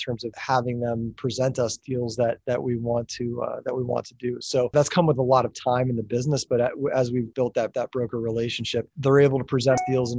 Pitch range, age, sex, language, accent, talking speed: 115-130 Hz, 30-49, male, English, American, 255 wpm